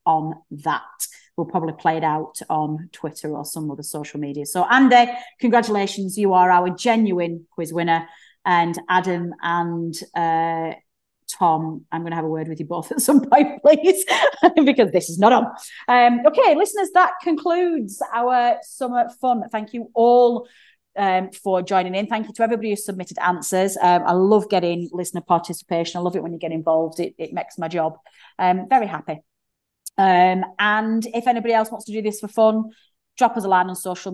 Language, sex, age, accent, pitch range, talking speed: English, female, 30-49, British, 170-225 Hz, 185 wpm